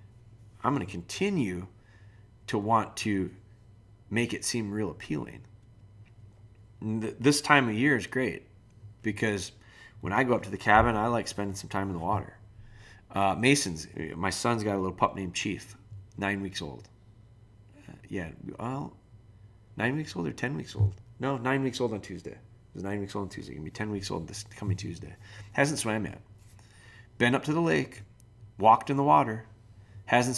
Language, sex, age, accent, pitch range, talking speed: English, male, 30-49, American, 100-120 Hz, 180 wpm